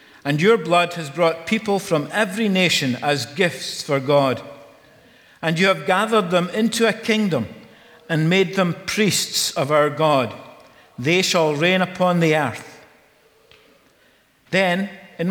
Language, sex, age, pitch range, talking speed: English, male, 50-69, 150-185 Hz, 140 wpm